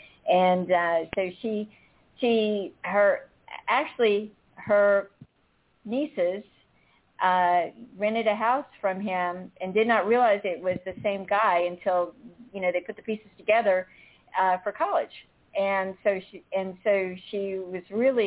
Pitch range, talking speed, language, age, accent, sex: 180-215 Hz, 140 wpm, English, 50-69, American, female